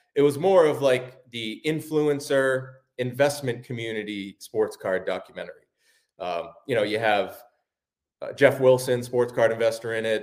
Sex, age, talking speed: male, 30-49, 145 wpm